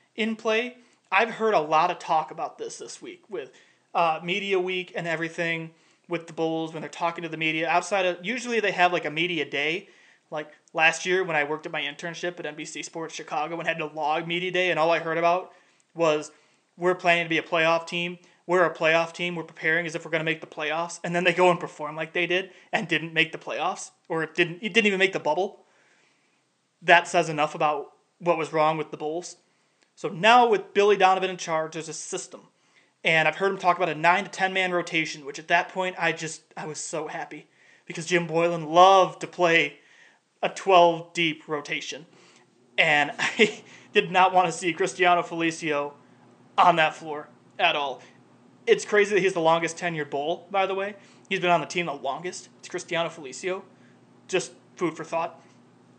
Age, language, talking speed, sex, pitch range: 30-49, English, 205 wpm, male, 160-185 Hz